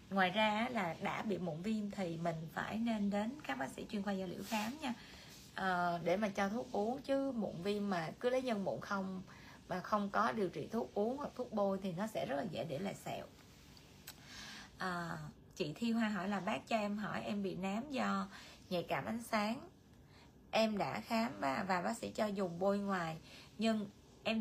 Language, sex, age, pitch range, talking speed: Vietnamese, female, 20-39, 185-225 Hz, 210 wpm